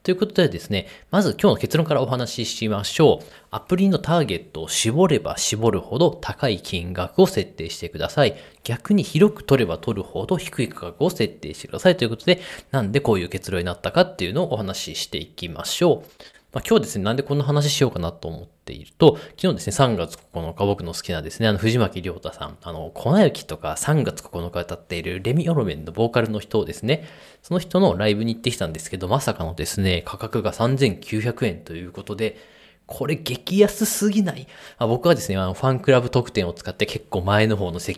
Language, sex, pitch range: Japanese, male, 90-145 Hz